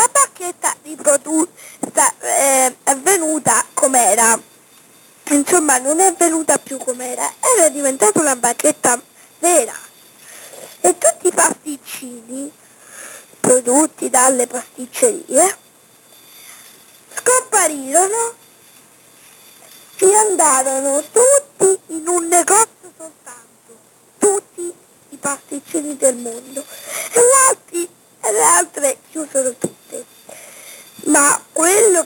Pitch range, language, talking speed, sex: 270-385 Hz, Italian, 85 wpm, female